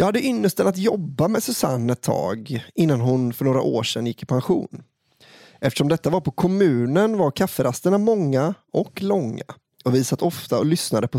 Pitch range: 125-170 Hz